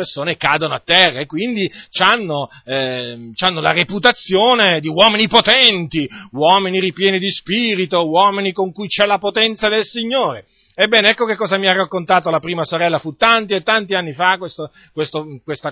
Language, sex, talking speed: Italian, male, 165 wpm